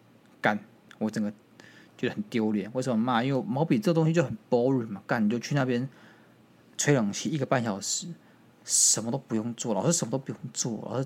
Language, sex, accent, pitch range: Chinese, male, native, 110-145 Hz